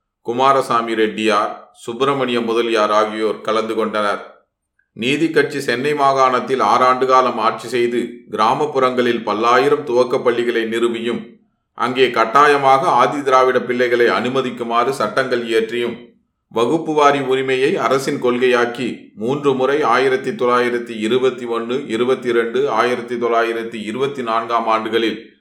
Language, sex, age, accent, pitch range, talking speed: Tamil, male, 30-49, native, 115-135 Hz, 90 wpm